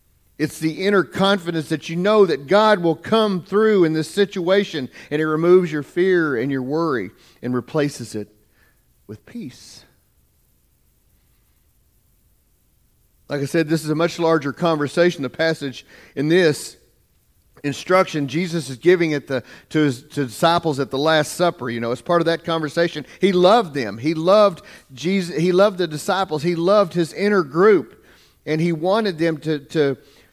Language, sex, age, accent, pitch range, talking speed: English, male, 40-59, American, 130-180 Hz, 155 wpm